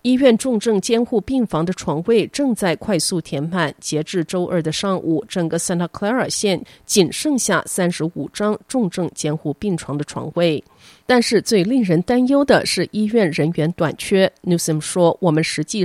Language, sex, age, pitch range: Chinese, female, 30-49, 155-210 Hz